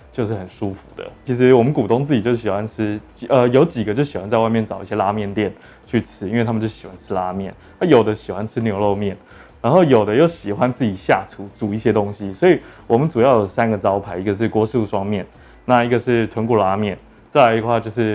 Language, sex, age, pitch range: Chinese, male, 20-39, 105-125 Hz